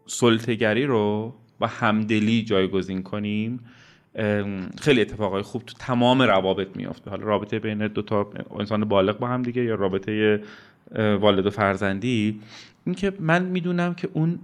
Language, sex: Persian, male